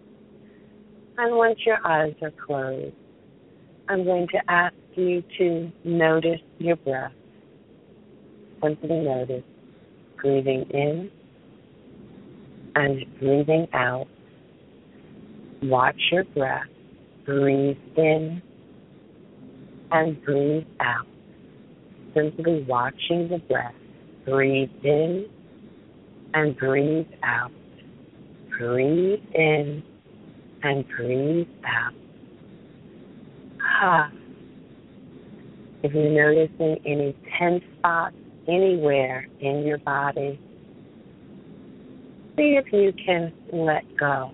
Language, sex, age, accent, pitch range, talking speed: English, female, 40-59, American, 140-170 Hz, 85 wpm